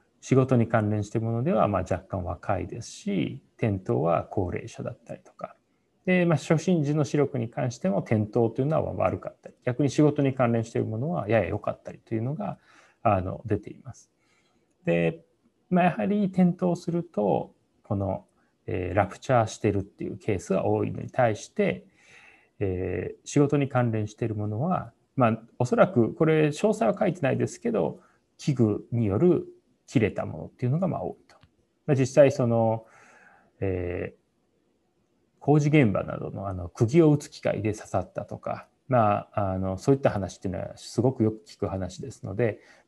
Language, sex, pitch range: Japanese, male, 105-155 Hz